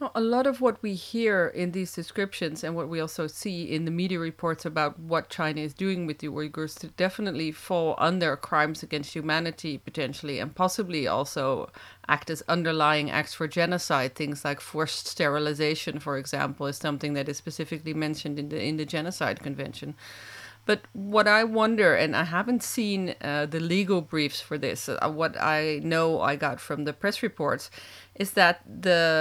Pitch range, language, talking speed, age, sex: 150-185 Hz, English, 180 wpm, 40-59, female